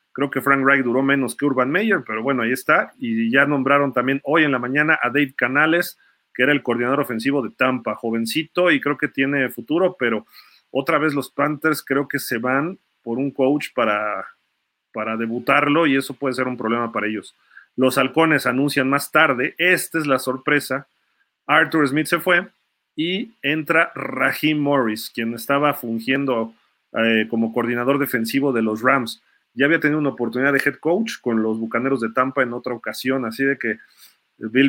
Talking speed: 185 wpm